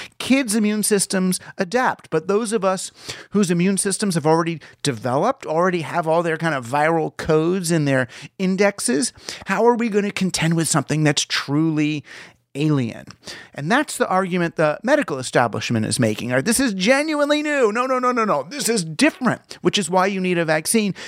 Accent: American